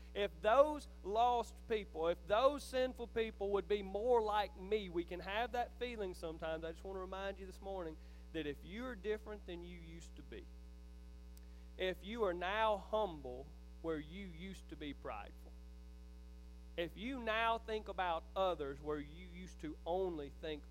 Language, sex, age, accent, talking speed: English, male, 40-59, American, 170 wpm